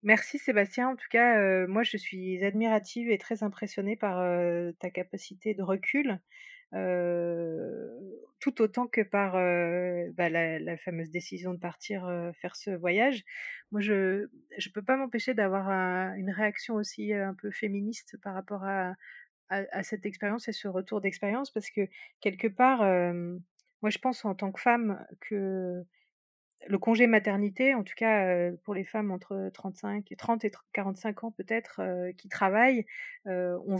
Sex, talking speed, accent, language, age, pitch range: female, 165 wpm, French, French, 30-49, 185-225 Hz